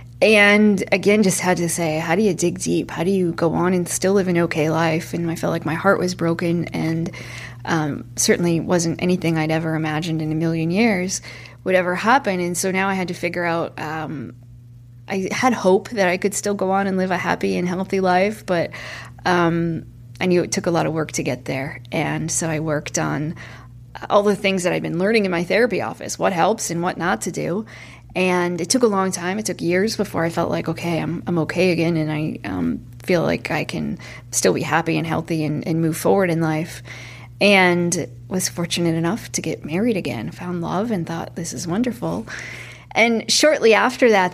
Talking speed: 220 wpm